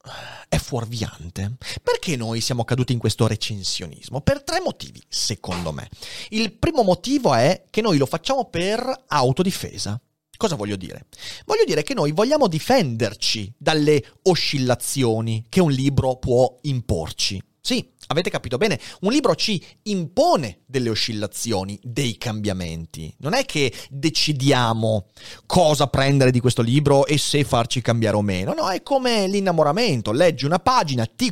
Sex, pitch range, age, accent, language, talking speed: male, 110-185 Hz, 30-49, native, Italian, 145 wpm